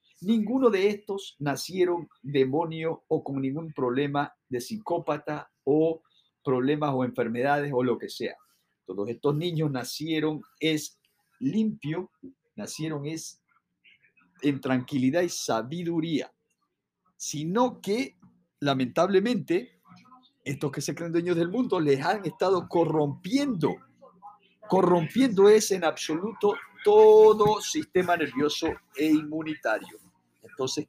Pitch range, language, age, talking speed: 150-195 Hz, English, 50-69, 105 wpm